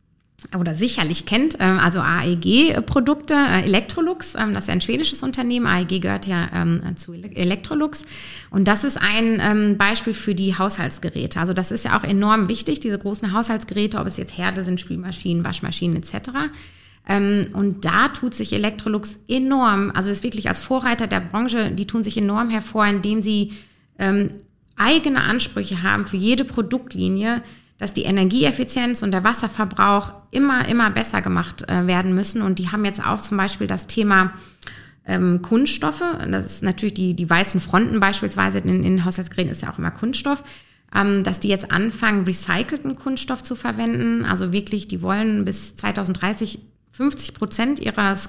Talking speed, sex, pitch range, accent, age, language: 155 wpm, female, 185-225 Hz, German, 30-49, German